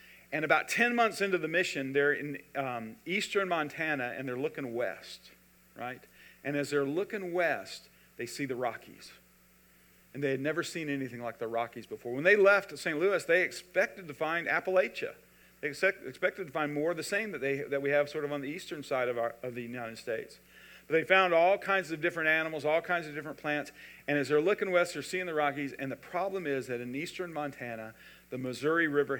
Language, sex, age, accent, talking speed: English, male, 50-69, American, 215 wpm